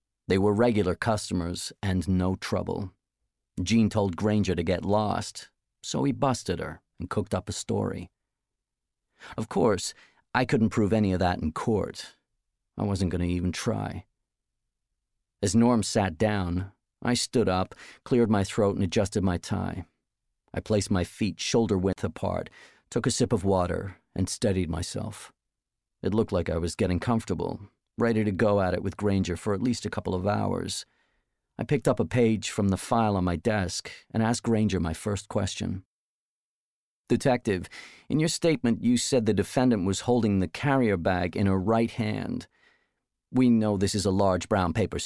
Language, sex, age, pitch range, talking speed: English, male, 40-59, 95-115 Hz, 175 wpm